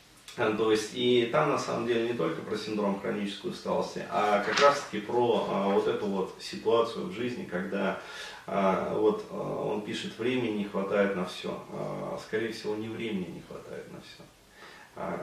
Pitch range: 105-145 Hz